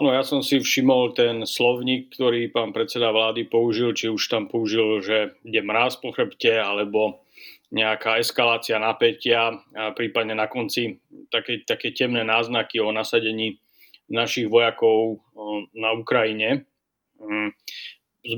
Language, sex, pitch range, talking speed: Slovak, male, 110-130 Hz, 130 wpm